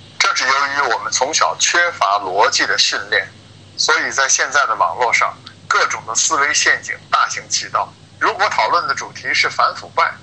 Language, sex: Chinese, male